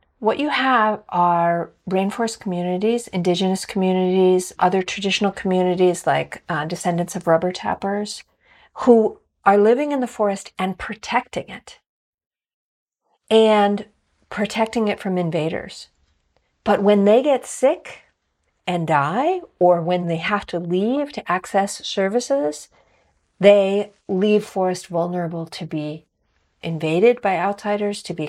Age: 50-69